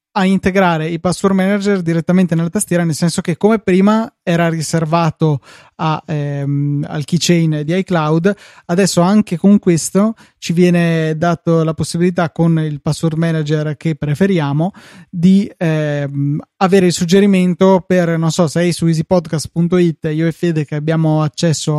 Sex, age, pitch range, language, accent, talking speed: male, 20-39, 155-185 Hz, Italian, native, 150 wpm